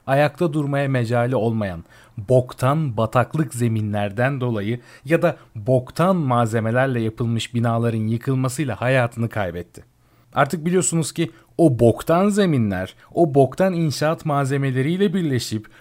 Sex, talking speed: male, 105 wpm